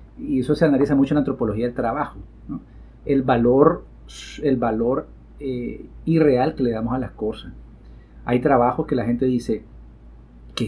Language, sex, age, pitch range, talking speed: Spanish, male, 30-49, 105-130 Hz, 170 wpm